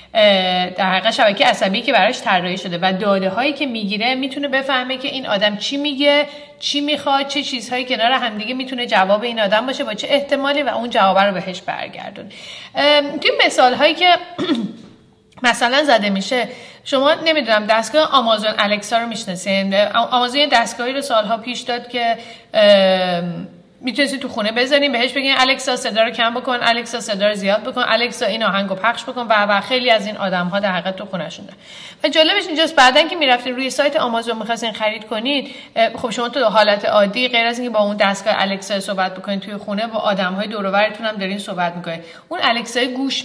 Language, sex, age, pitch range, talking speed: Persian, female, 40-59, 200-255 Hz, 185 wpm